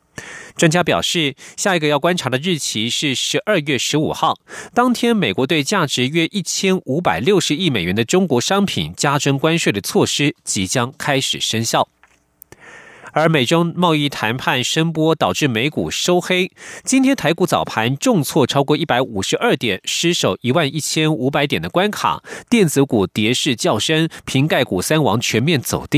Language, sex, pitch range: German, male, 130-170 Hz